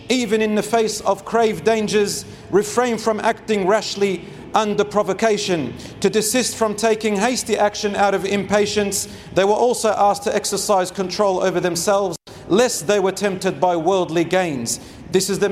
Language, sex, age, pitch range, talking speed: English, male, 40-59, 185-220 Hz, 160 wpm